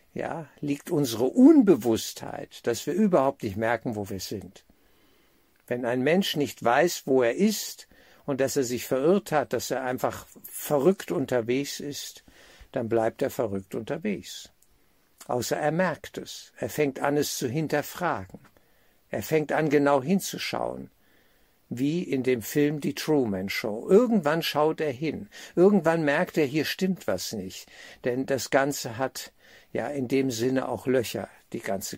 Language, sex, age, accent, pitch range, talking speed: German, male, 60-79, German, 115-150 Hz, 155 wpm